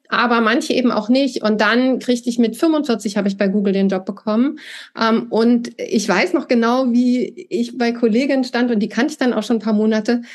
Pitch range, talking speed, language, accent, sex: 215-245 Hz, 220 wpm, German, German, female